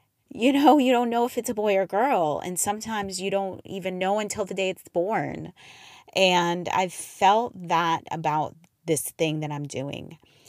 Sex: female